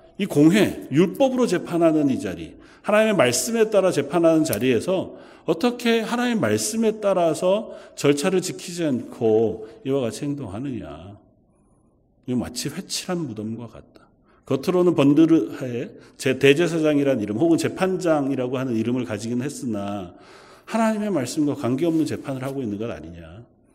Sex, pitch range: male, 125-195 Hz